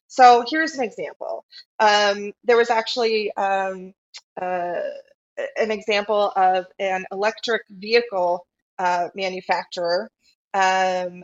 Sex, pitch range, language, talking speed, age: female, 185-235 Hz, English, 100 wpm, 20-39